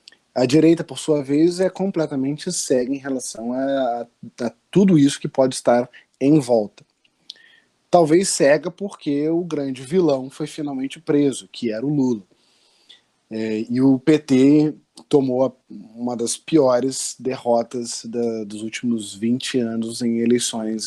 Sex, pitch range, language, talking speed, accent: male, 120-165 Hz, Portuguese, 130 wpm, Brazilian